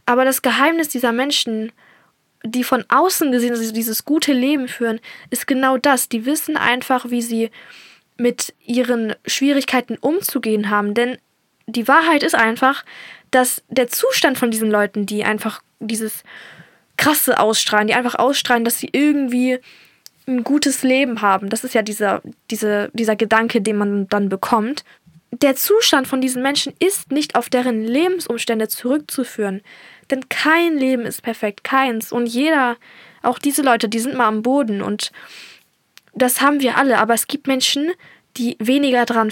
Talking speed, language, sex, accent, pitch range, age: 160 wpm, German, female, German, 225-275 Hz, 10-29